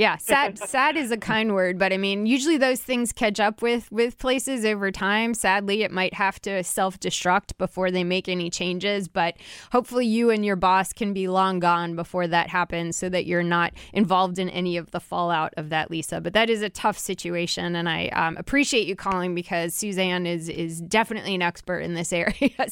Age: 20-39